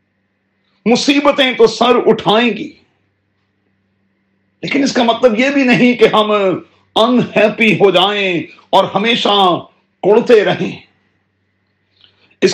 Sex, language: male, Urdu